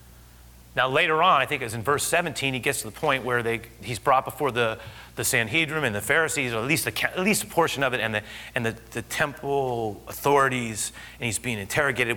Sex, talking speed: male, 230 wpm